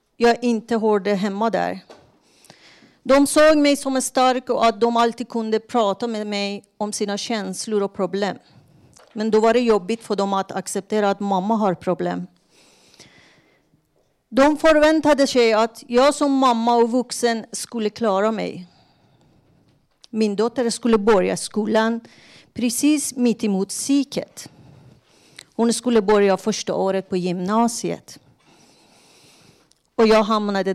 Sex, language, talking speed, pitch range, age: female, Swedish, 130 wpm, 195-235 Hz, 40-59